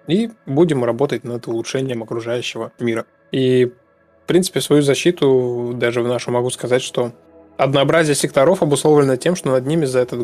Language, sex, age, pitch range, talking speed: Russian, male, 20-39, 120-145 Hz, 160 wpm